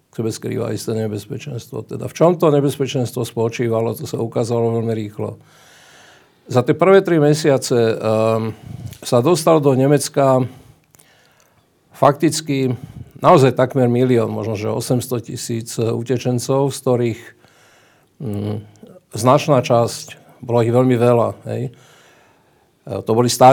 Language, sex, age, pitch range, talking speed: Slovak, male, 50-69, 115-135 Hz, 120 wpm